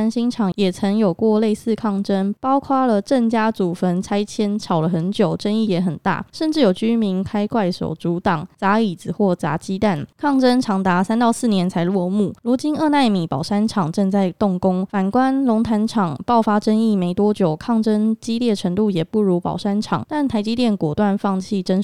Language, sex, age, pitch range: Chinese, female, 20-39, 185-225 Hz